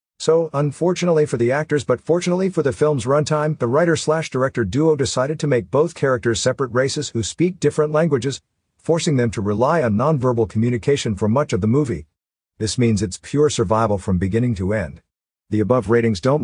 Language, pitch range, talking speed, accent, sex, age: English, 100-135 Hz, 185 wpm, American, male, 50-69